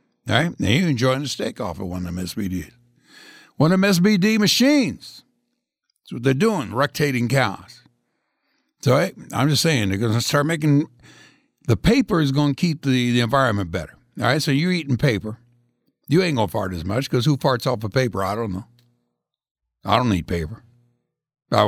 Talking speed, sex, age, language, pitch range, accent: 195 wpm, male, 60-79, English, 120-170 Hz, American